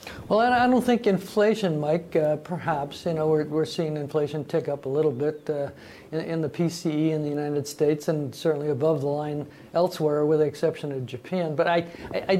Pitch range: 150-170 Hz